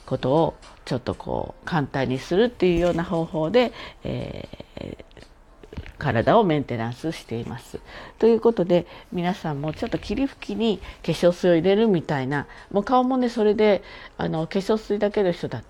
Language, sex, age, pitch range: Japanese, female, 50-69, 130-195 Hz